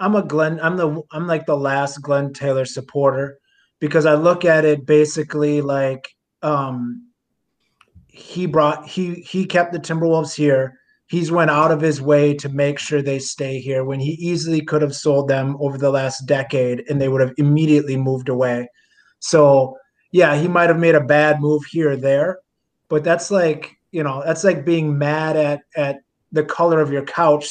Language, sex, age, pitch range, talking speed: English, male, 30-49, 140-170 Hz, 185 wpm